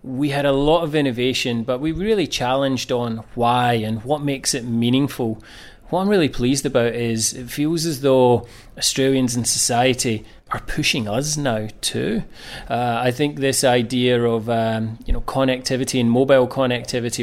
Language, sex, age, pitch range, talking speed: English, male, 30-49, 120-145 Hz, 165 wpm